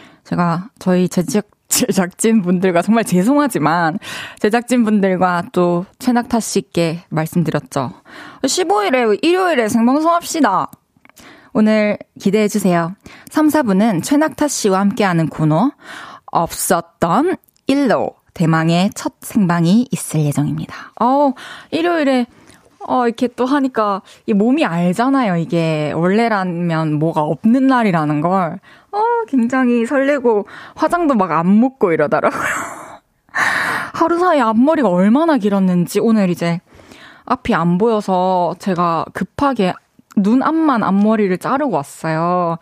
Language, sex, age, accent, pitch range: Korean, female, 20-39, native, 175-265 Hz